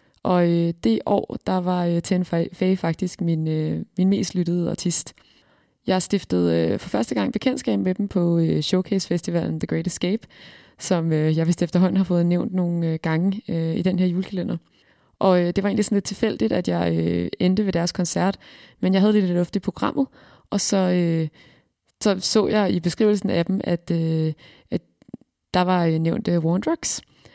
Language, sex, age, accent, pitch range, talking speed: Danish, female, 20-39, native, 165-190 Hz, 160 wpm